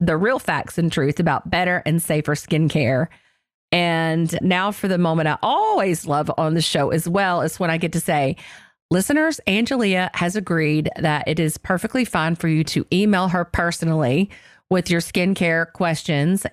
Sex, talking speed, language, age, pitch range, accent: female, 175 wpm, English, 40-59, 155-185 Hz, American